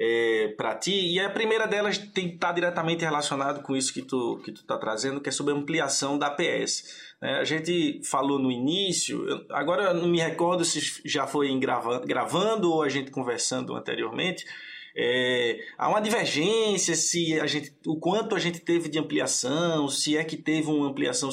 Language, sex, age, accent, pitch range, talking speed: Portuguese, male, 20-39, Brazilian, 140-185 Hz, 195 wpm